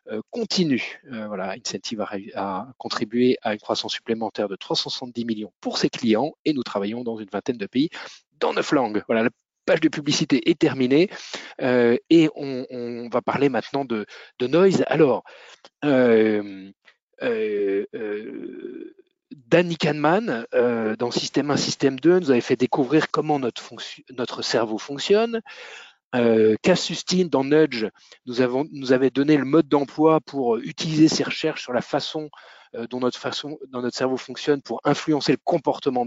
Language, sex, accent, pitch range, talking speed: French, male, French, 125-175 Hz, 155 wpm